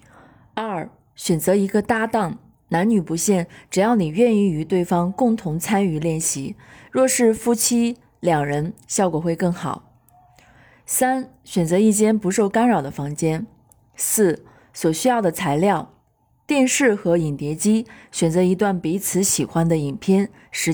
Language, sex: Chinese, female